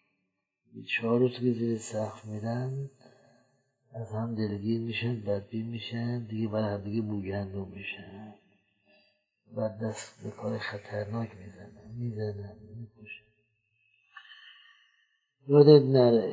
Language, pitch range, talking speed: Persian, 110-140 Hz, 95 wpm